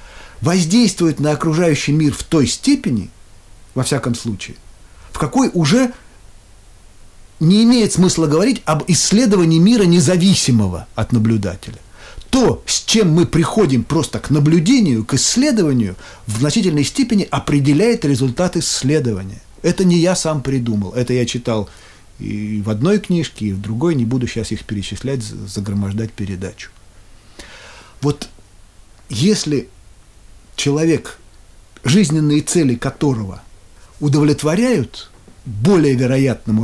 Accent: native